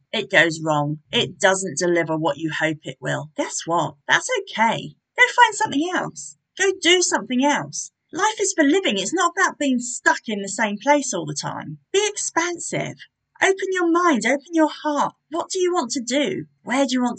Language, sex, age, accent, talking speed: English, female, 40-59, British, 200 wpm